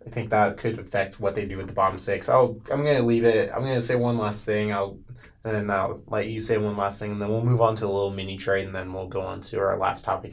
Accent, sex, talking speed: American, male, 315 wpm